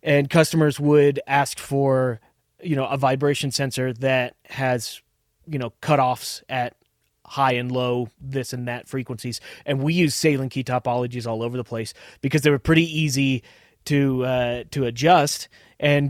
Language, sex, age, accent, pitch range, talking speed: English, male, 30-49, American, 120-145 Hz, 160 wpm